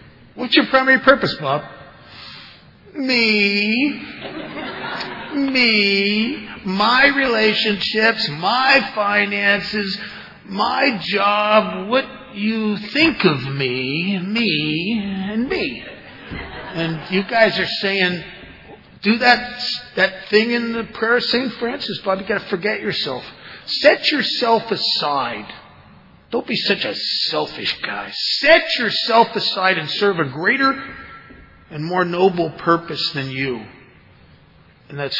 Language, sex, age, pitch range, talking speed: English, male, 50-69, 185-240 Hz, 115 wpm